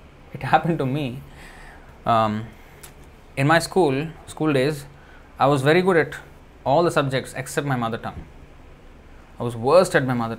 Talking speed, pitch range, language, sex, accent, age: 160 wpm, 85-140 Hz, English, male, Indian, 20-39